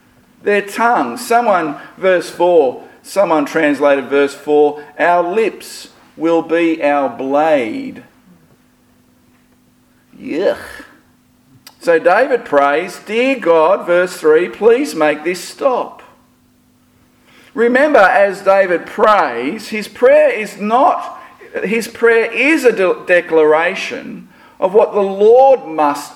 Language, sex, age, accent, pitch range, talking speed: English, male, 50-69, Australian, 160-240 Hz, 105 wpm